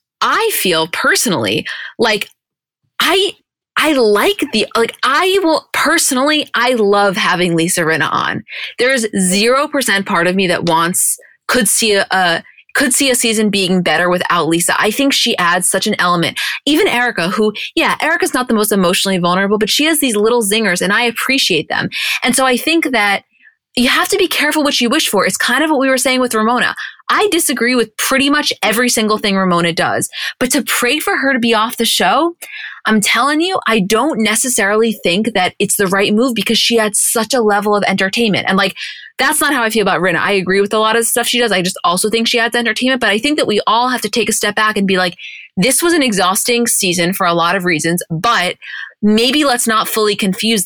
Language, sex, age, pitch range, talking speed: English, female, 20-39, 195-260 Hz, 220 wpm